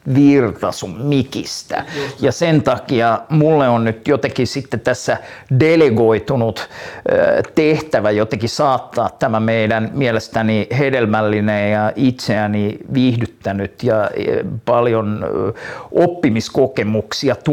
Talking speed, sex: 90 wpm, male